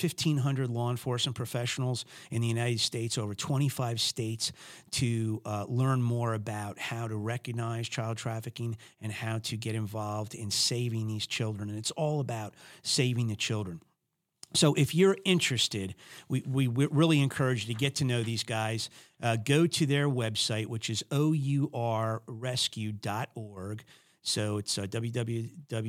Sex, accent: male, American